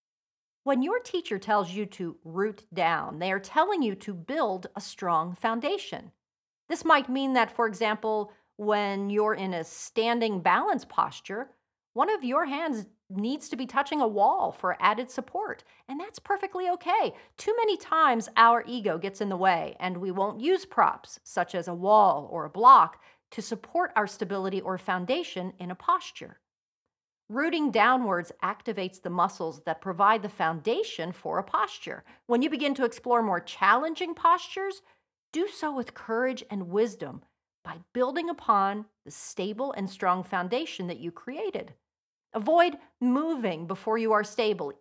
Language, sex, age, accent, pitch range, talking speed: English, female, 40-59, American, 195-300 Hz, 160 wpm